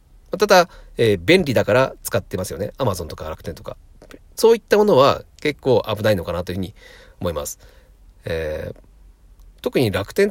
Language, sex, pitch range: Japanese, male, 90-145 Hz